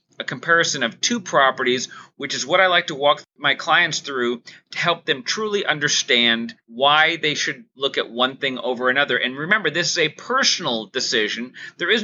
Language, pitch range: English, 130-180 Hz